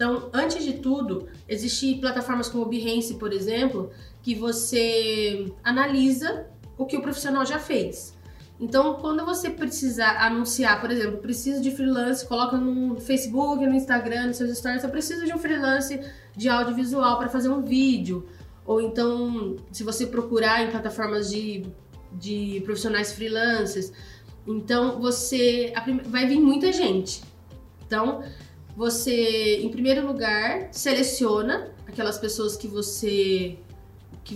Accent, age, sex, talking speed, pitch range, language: Brazilian, 20-39, female, 135 wpm, 210-265 Hz, Portuguese